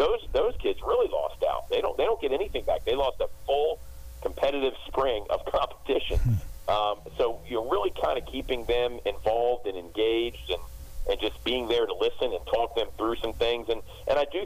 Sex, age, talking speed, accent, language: male, 40-59, 205 wpm, American, English